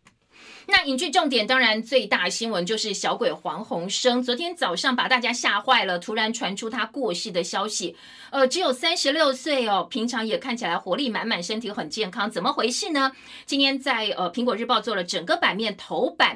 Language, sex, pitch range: Chinese, female, 210-265 Hz